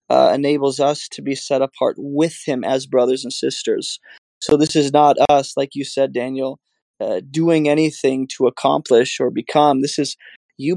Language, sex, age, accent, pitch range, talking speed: English, male, 20-39, American, 135-150 Hz, 180 wpm